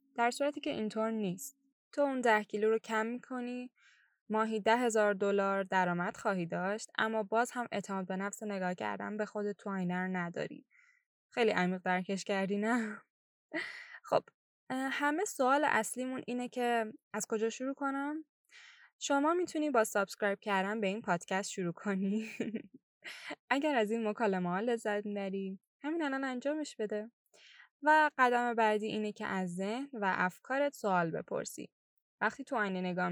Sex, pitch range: female, 195-245 Hz